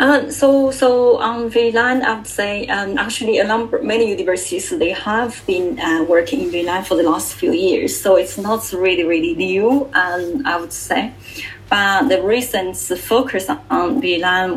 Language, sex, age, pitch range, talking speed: English, female, 20-39, 180-255 Hz, 175 wpm